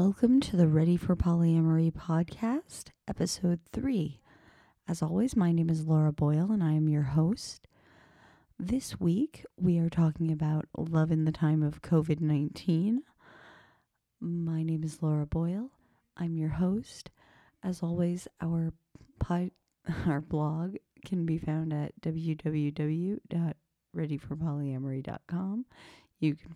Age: 30-49